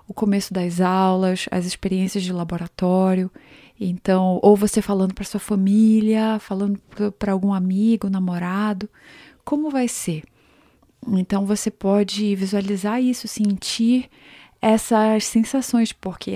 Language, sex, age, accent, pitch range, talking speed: Portuguese, female, 20-39, Brazilian, 190-225 Hz, 115 wpm